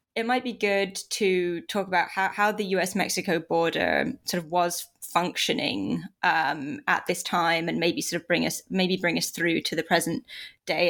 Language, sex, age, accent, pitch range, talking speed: English, female, 20-39, British, 180-215 Hz, 185 wpm